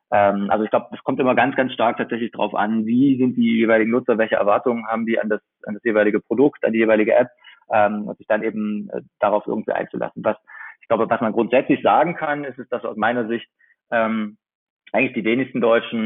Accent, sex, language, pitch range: German, male, German, 110-130 Hz